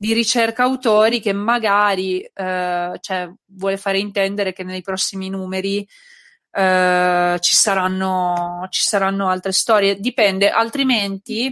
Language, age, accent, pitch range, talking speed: Italian, 20-39, native, 185-220 Hz, 120 wpm